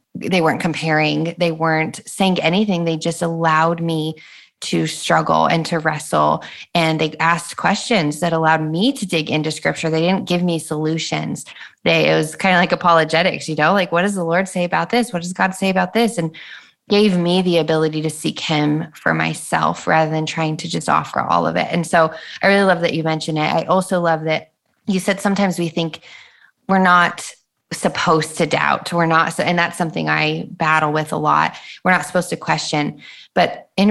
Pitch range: 160-175 Hz